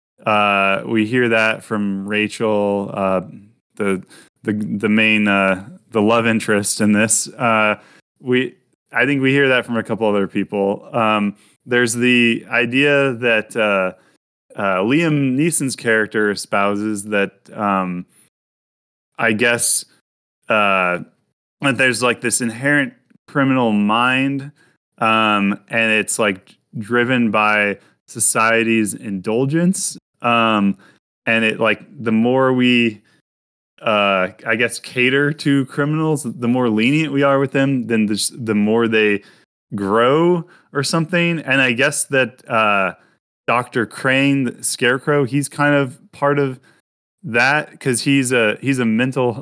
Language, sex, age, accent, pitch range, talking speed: English, male, 20-39, American, 105-135 Hz, 130 wpm